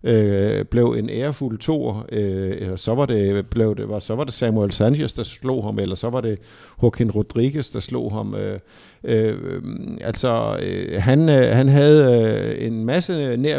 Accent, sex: native, male